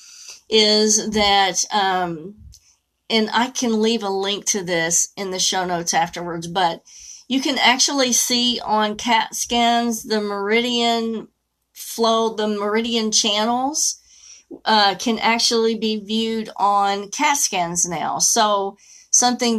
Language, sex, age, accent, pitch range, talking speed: English, female, 40-59, American, 195-235 Hz, 125 wpm